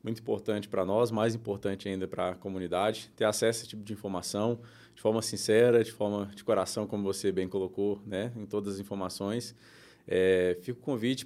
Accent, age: Brazilian, 20-39